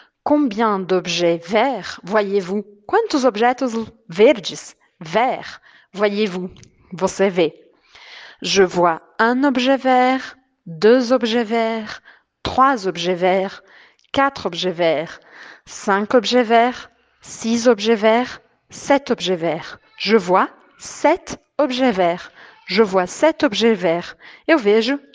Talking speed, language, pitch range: 110 wpm, Portuguese, 195-280 Hz